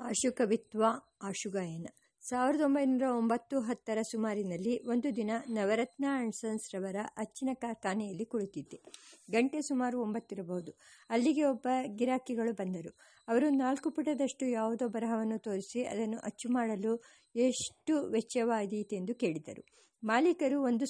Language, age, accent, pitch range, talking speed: English, 50-69, Indian, 220-275 Hz, 105 wpm